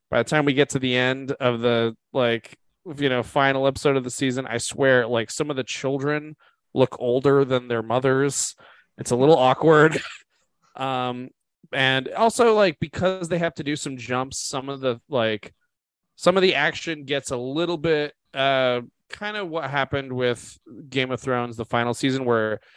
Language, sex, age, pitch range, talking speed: English, male, 20-39, 120-150 Hz, 185 wpm